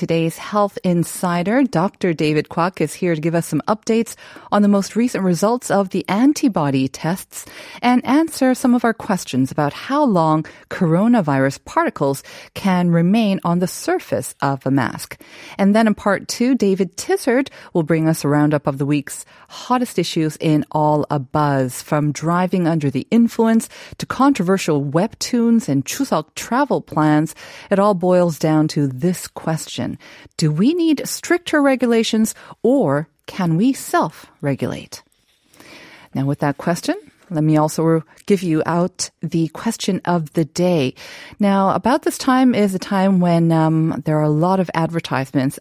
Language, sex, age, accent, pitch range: Korean, female, 40-59, American, 150-220 Hz